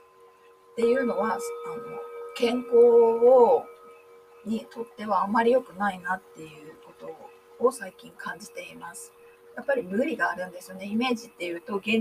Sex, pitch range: female, 190-315 Hz